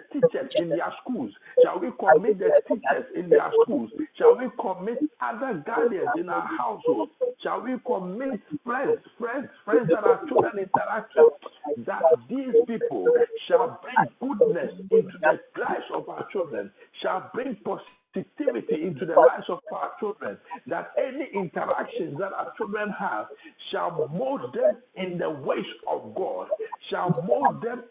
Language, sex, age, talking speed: English, male, 50-69, 150 wpm